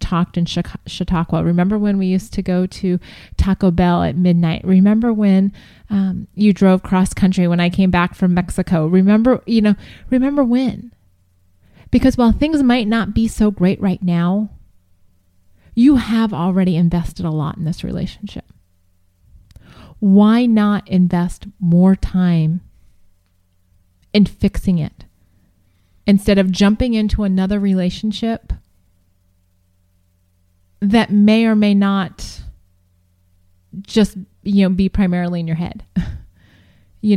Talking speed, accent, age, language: 130 wpm, American, 30-49, English